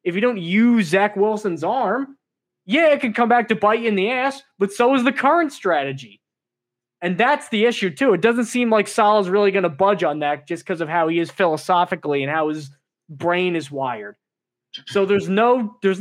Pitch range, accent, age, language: 170-230 Hz, American, 20-39, English